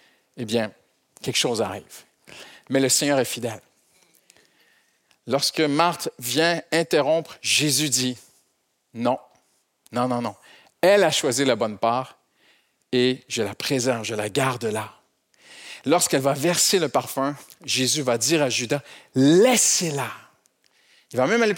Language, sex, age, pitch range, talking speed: French, male, 50-69, 130-195 Hz, 145 wpm